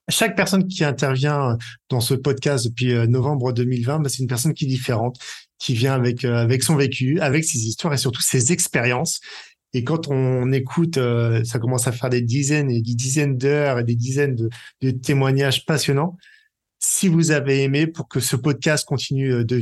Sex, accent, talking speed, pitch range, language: male, French, 185 wpm, 125-155 Hz, French